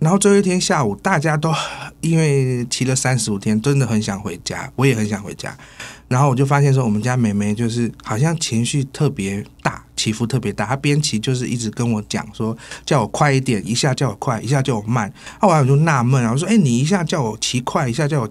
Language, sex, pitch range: Chinese, male, 110-145 Hz